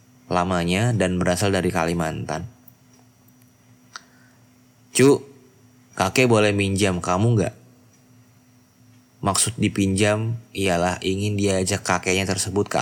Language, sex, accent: Indonesian, male, native